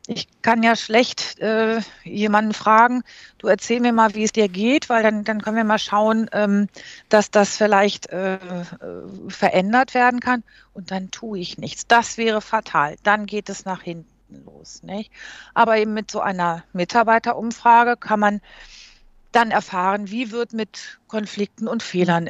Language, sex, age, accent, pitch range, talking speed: German, female, 50-69, German, 180-225 Hz, 160 wpm